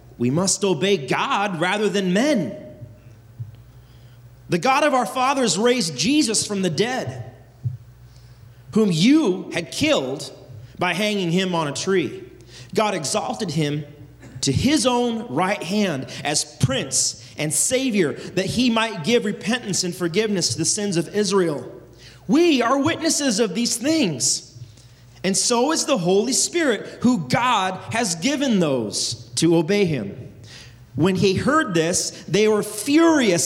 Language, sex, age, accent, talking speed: English, male, 30-49, American, 140 wpm